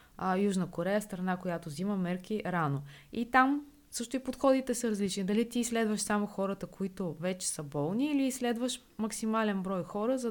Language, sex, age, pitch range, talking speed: Bulgarian, female, 20-39, 175-225 Hz, 175 wpm